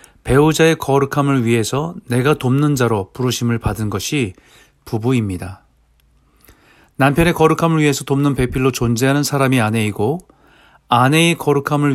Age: 40-59